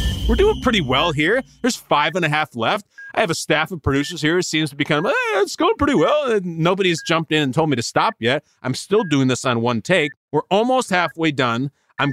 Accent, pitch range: American, 130-185 Hz